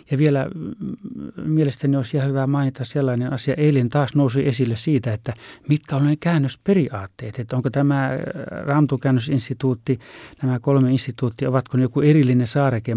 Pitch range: 115-135 Hz